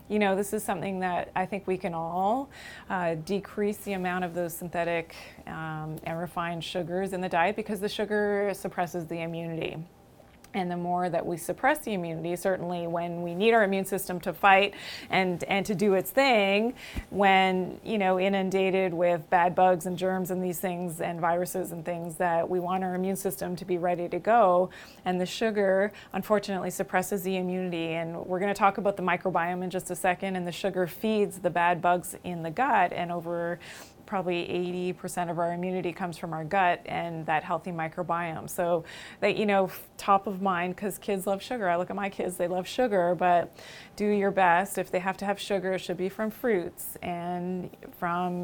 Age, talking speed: 20-39, 200 wpm